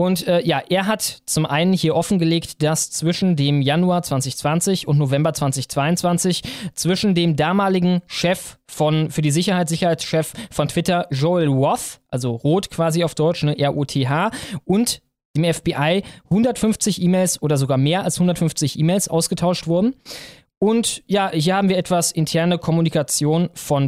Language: German